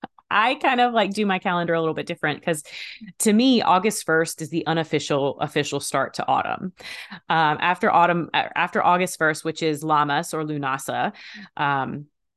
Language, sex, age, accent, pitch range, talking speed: English, female, 20-39, American, 150-210 Hz, 170 wpm